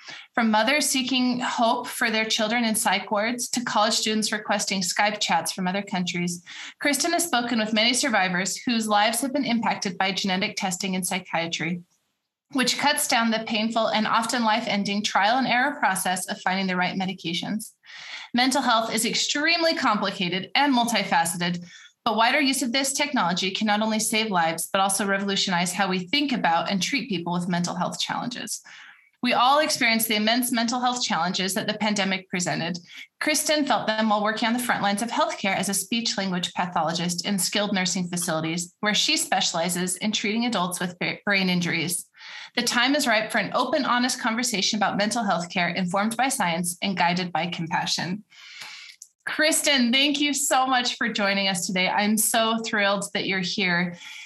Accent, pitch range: American, 185-240 Hz